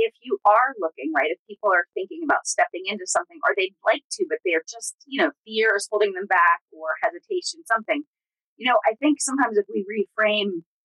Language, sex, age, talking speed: English, female, 30-49, 210 wpm